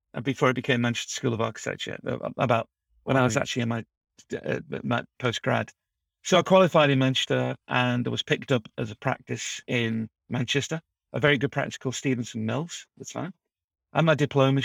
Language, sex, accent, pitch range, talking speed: English, male, British, 120-145 Hz, 185 wpm